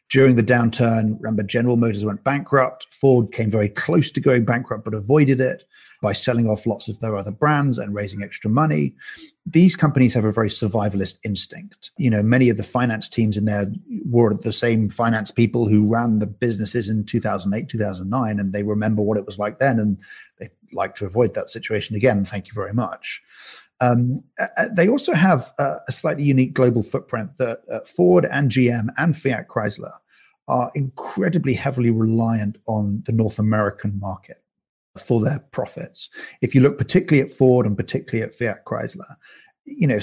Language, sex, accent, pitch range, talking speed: English, male, British, 105-130 Hz, 180 wpm